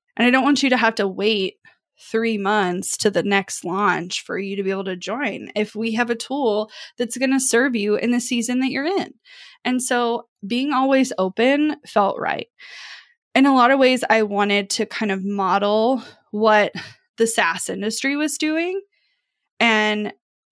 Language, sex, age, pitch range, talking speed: English, female, 20-39, 210-265 Hz, 185 wpm